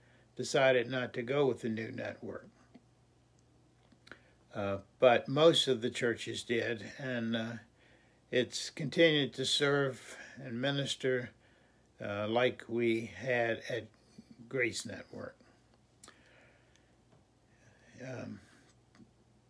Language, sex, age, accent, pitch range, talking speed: English, male, 60-79, American, 120-140 Hz, 95 wpm